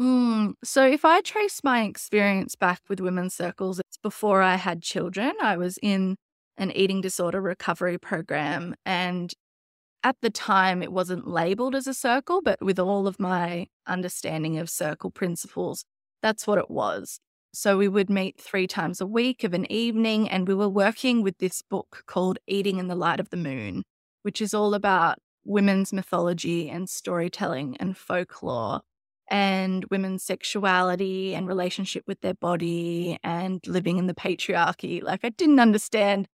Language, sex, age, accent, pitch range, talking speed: English, female, 20-39, Australian, 180-215 Hz, 165 wpm